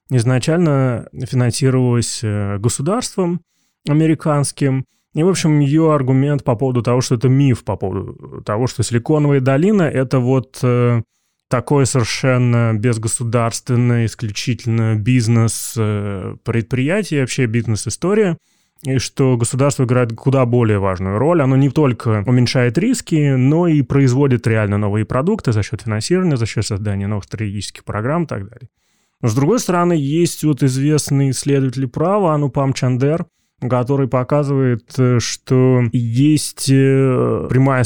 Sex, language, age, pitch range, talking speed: male, Russian, 20-39, 115-145 Hz, 120 wpm